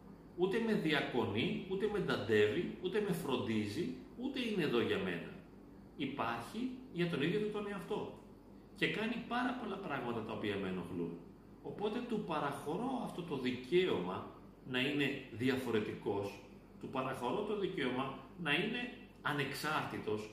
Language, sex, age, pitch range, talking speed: Greek, male, 40-59, 125-205 Hz, 135 wpm